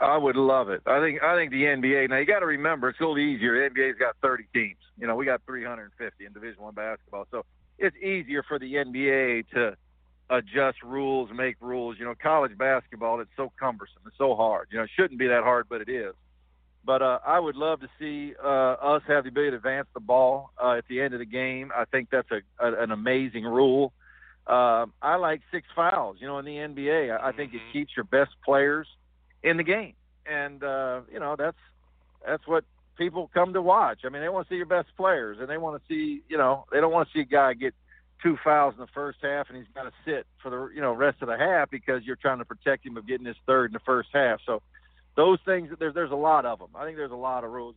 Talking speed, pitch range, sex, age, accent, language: 255 wpm, 120-150 Hz, male, 50-69, American, English